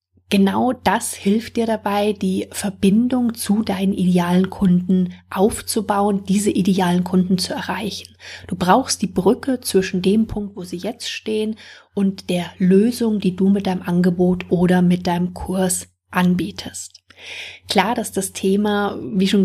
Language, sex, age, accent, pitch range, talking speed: German, female, 30-49, German, 180-200 Hz, 145 wpm